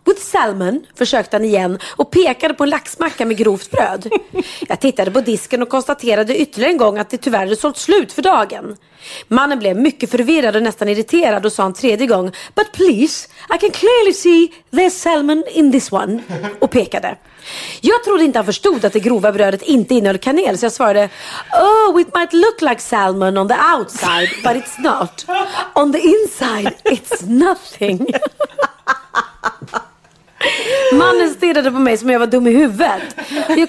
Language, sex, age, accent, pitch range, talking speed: Swedish, female, 30-49, native, 220-335 Hz, 175 wpm